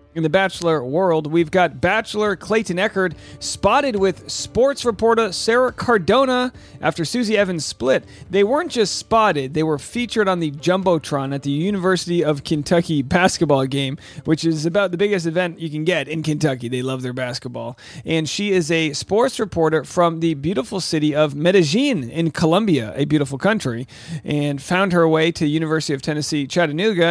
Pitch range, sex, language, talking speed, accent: 150-200 Hz, male, English, 170 wpm, American